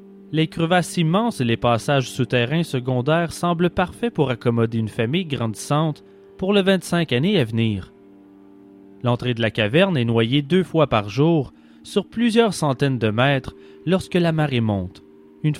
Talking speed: 160 wpm